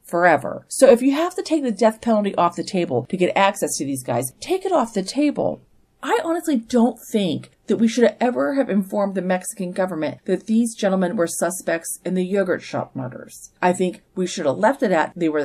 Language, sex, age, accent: English, female, 40-59, American